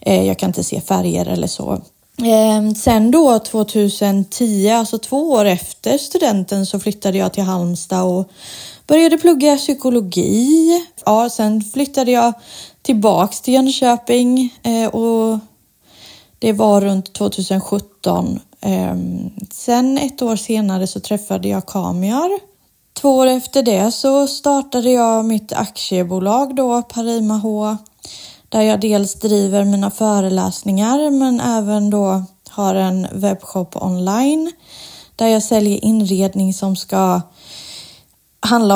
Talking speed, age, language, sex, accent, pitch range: 115 wpm, 30-49, Swedish, female, native, 190-240 Hz